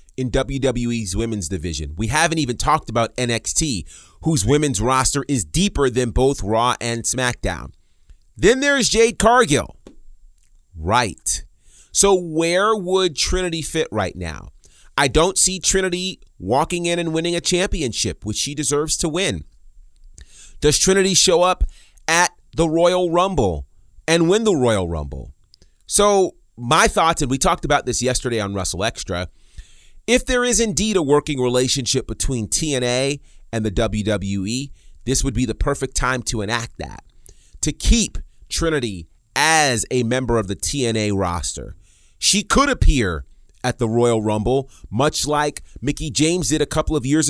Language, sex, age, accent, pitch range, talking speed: English, male, 30-49, American, 100-160 Hz, 150 wpm